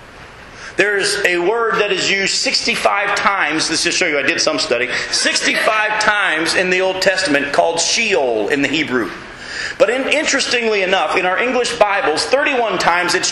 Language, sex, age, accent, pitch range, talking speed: English, male, 40-59, American, 175-210 Hz, 170 wpm